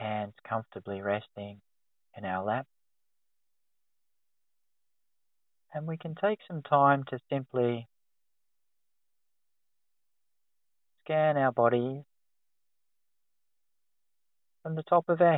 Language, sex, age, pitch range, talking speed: English, male, 40-59, 100-115 Hz, 85 wpm